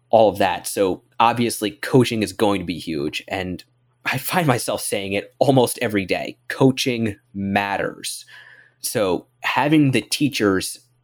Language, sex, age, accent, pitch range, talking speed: English, male, 20-39, American, 105-130 Hz, 140 wpm